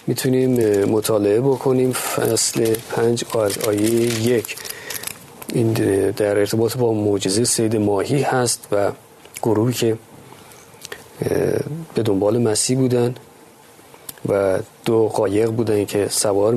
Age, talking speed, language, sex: 40-59, 100 wpm, Persian, male